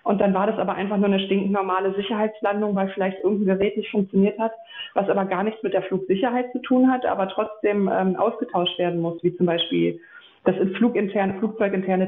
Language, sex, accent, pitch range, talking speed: German, female, German, 185-215 Hz, 200 wpm